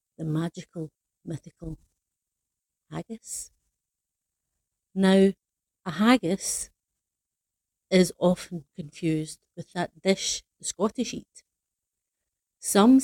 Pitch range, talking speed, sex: 155-200 Hz, 80 wpm, female